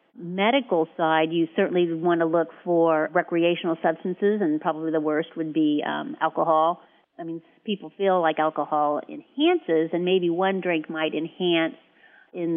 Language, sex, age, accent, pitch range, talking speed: English, female, 40-59, American, 160-185 Hz, 155 wpm